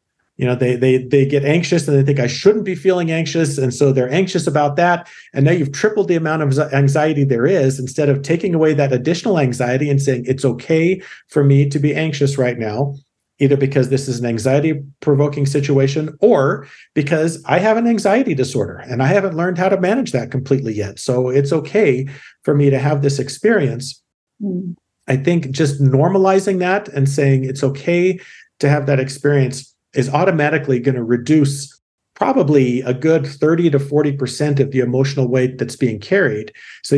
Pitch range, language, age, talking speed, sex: 130-155 Hz, English, 40-59, 190 wpm, male